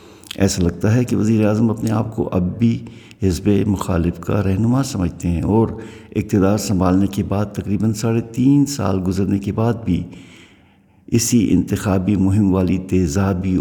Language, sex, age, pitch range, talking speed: Urdu, male, 50-69, 95-105 Hz, 155 wpm